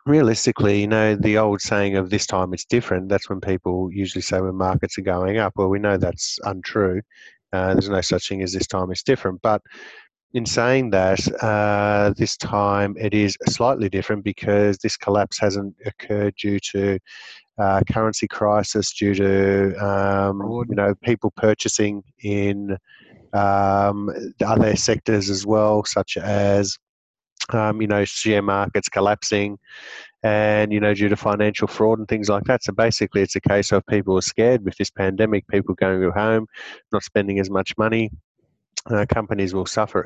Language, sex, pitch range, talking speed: English, male, 100-110 Hz, 170 wpm